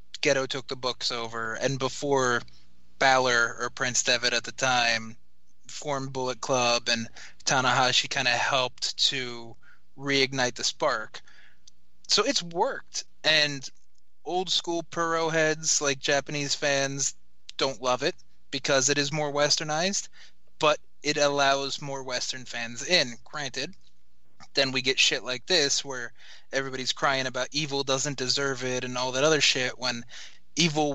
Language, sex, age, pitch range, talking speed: English, male, 20-39, 125-150 Hz, 145 wpm